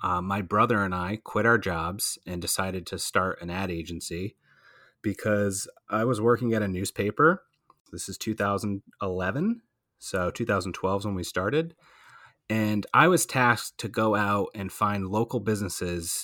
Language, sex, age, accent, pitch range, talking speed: English, male, 30-49, American, 90-110 Hz, 155 wpm